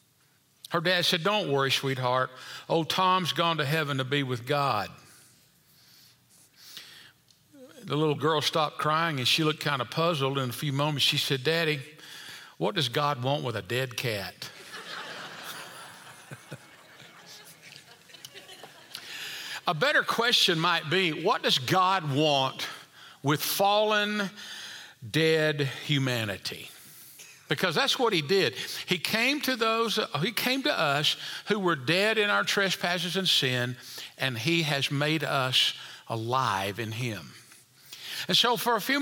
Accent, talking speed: American, 135 wpm